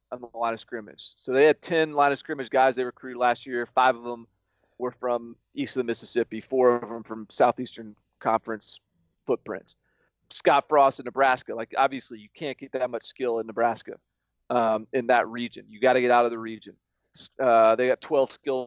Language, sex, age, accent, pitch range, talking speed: English, male, 30-49, American, 115-140 Hz, 205 wpm